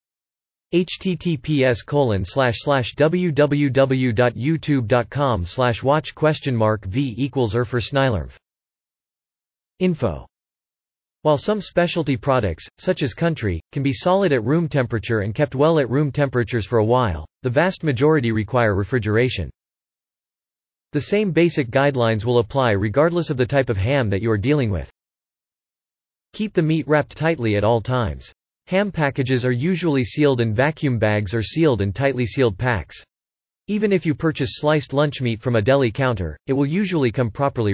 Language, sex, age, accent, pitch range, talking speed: English, male, 40-59, American, 110-150 Hz, 145 wpm